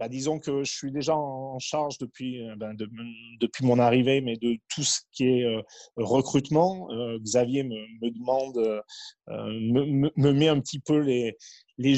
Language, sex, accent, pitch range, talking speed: French, male, French, 120-145 Hz, 165 wpm